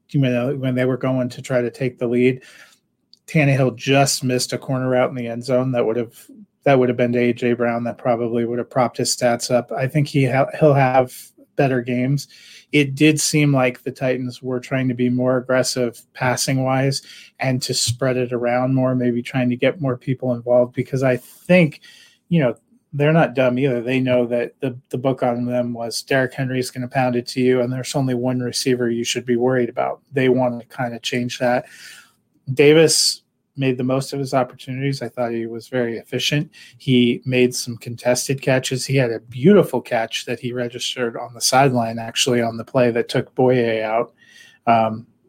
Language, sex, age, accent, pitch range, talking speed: English, male, 30-49, American, 120-135 Hz, 205 wpm